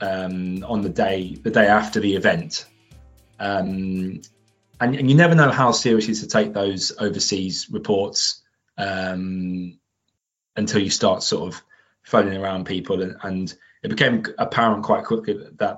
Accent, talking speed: British, 150 wpm